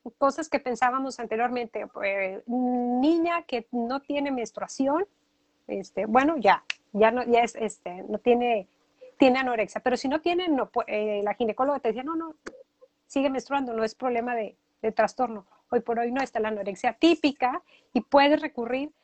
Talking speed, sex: 165 wpm, female